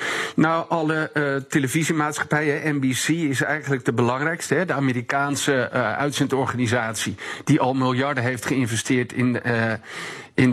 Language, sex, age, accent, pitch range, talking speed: Dutch, male, 50-69, Dutch, 125-145 Hz, 125 wpm